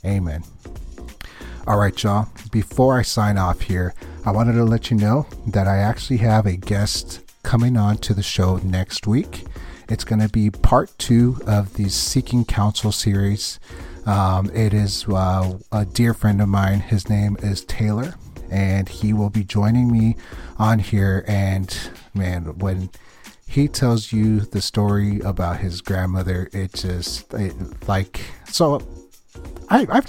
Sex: male